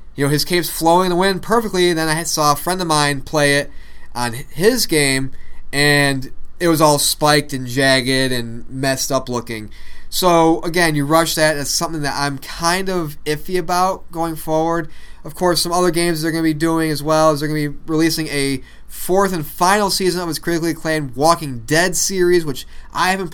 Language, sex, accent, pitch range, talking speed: English, male, American, 135-165 Hz, 210 wpm